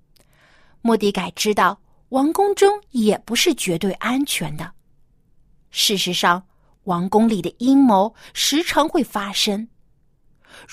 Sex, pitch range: female, 165-265 Hz